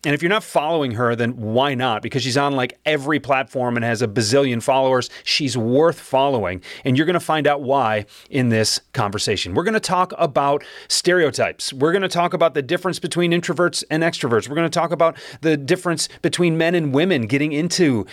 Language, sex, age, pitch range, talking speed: English, male, 30-49, 130-175 Hz, 210 wpm